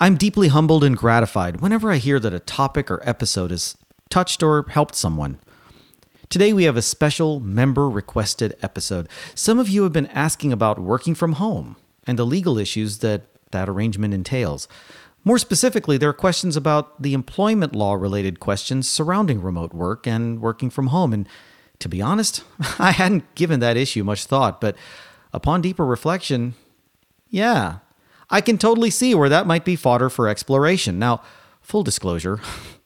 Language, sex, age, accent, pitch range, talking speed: English, male, 40-59, American, 105-160 Hz, 165 wpm